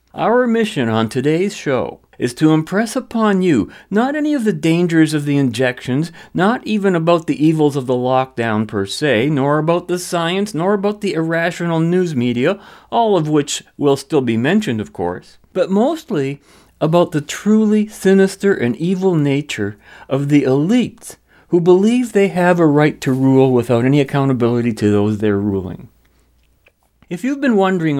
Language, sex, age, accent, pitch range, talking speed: English, male, 50-69, American, 115-180 Hz, 165 wpm